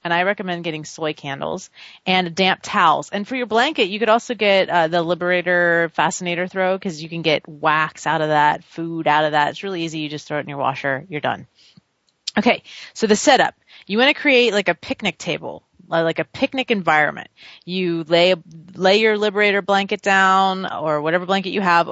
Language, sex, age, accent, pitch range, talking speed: English, female, 30-49, American, 150-190 Hz, 205 wpm